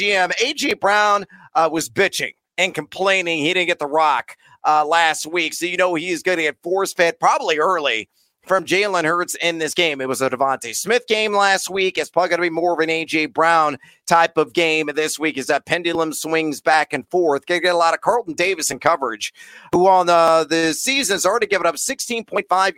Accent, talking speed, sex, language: American, 220 wpm, male, English